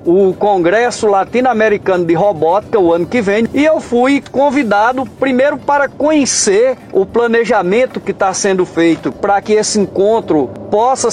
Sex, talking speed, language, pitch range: male, 145 wpm, Portuguese, 185-245 Hz